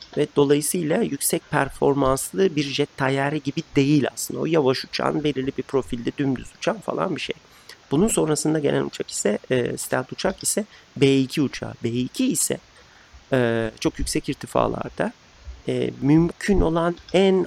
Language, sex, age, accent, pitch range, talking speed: Turkish, male, 40-59, native, 120-145 Hz, 145 wpm